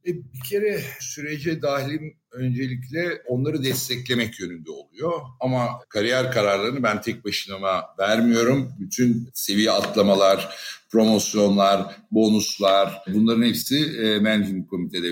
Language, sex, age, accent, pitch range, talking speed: Turkish, male, 60-79, native, 105-135 Hz, 100 wpm